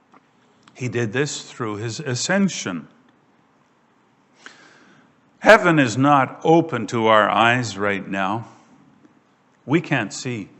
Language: English